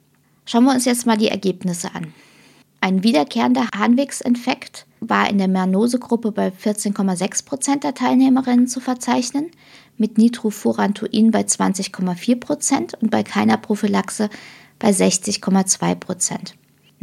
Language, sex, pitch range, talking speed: German, female, 190-225 Hz, 110 wpm